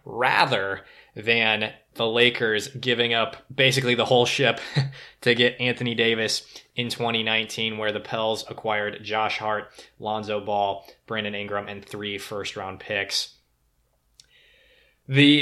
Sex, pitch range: male, 110-130 Hz